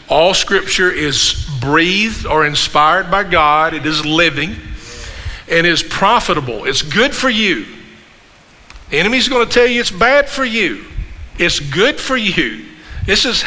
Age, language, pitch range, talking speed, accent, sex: 50-69, English, 145-180 Hz, 145 wpm, American, male